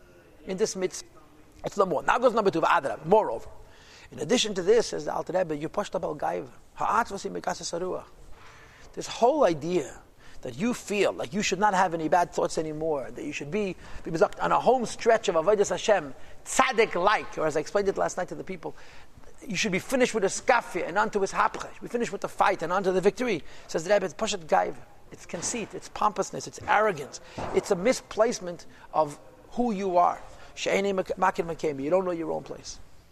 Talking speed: 185 wpm